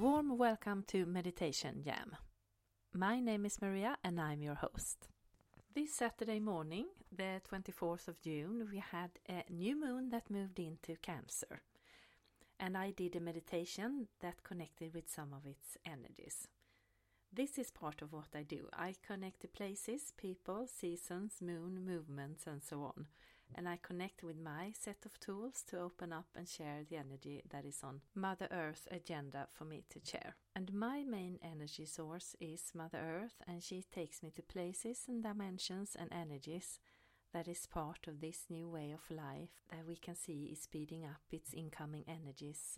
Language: English